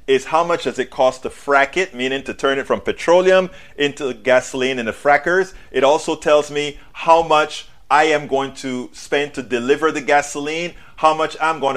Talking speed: 200 wpm